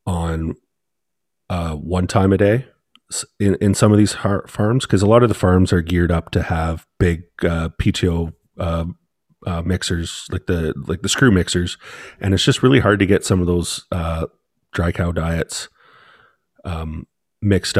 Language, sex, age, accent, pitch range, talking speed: English, male, 30-49, American, 85-100 Hz, 170 wpm